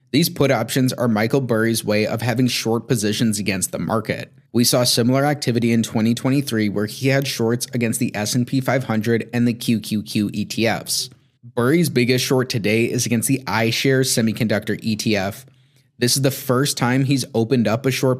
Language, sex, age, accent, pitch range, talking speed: English, male, 30-49, American, 115-135 Hz, 170 wpm